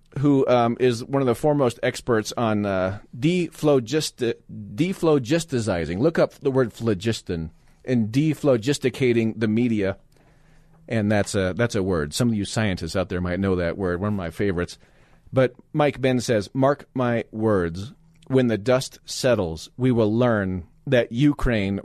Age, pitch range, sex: 40-59, 105-130 Hz, male